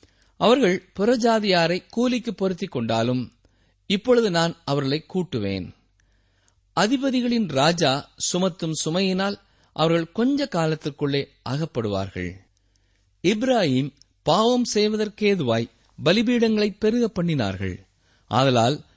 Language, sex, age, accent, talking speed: Tamil, male, 50-69, native, 75 wpm